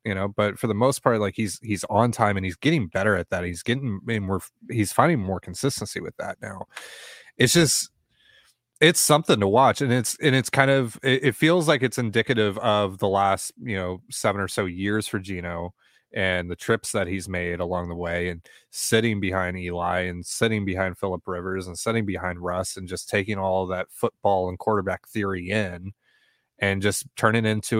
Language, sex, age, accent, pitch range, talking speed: English, male, 30-49, American, 95-125 Hz, 205 wpm